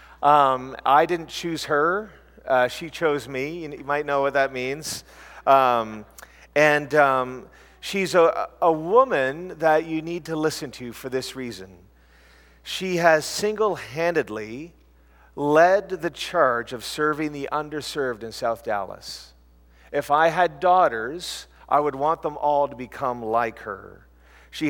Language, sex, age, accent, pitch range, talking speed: English, male, 40-59, American, 130-165 Hz, 145 wpm